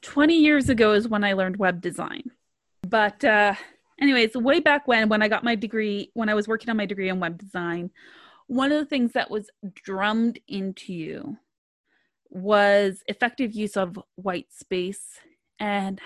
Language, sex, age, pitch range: English, female, 20-39, 195-240 Hz